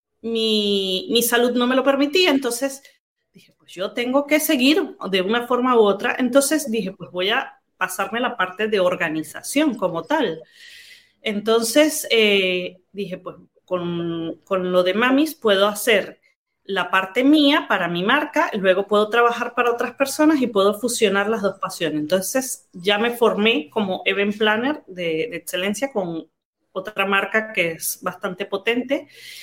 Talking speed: 160 wpm